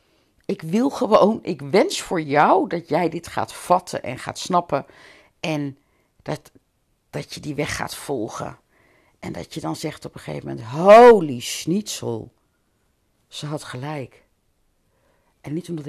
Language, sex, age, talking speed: Dutch, female, 60-79, 150 wpm